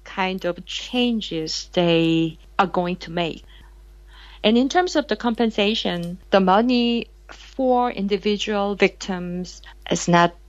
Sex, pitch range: female, 175-215 Hz